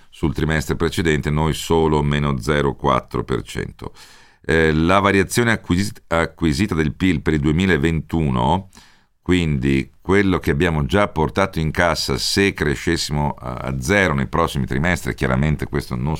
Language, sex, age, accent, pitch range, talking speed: Italian, male, 50-69, native, 70-90 Hz, 125 wpm